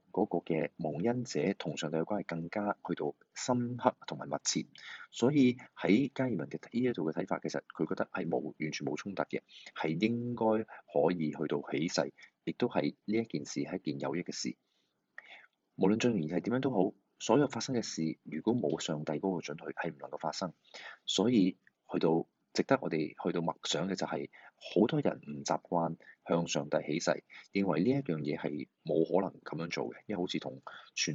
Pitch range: 80-110 Hz